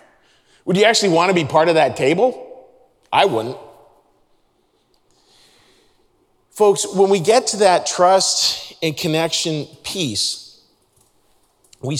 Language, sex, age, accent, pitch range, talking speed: English, male, 40-59, American, 135-175 Hz, 115 wpm